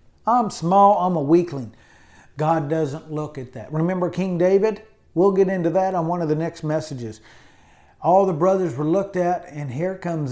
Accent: American